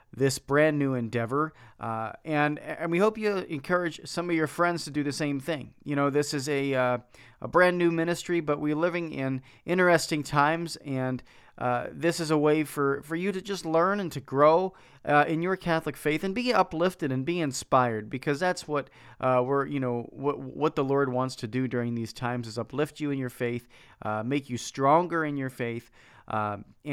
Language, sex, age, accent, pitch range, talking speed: English, male, 40-59, American, 125-155 Hz, 205 wpm